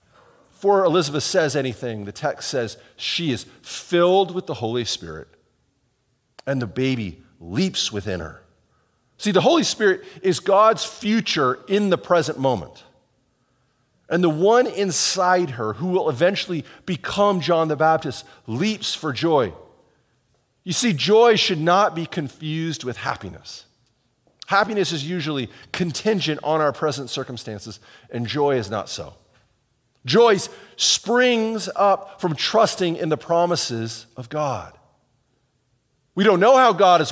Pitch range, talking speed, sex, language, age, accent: 125-180 Hz, 135 wpm, male, English, 40-59, American